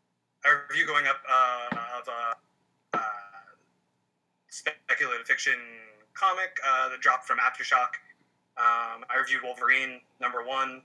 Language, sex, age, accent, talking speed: English, male, 20-39, American, 120 wpm